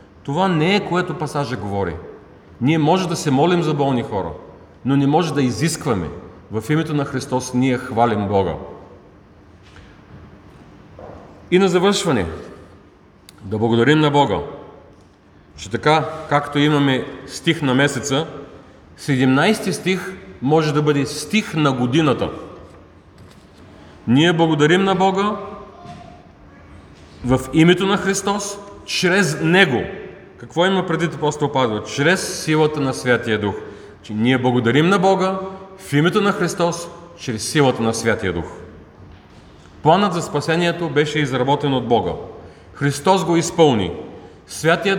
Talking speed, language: 125 wpm, Bulgarian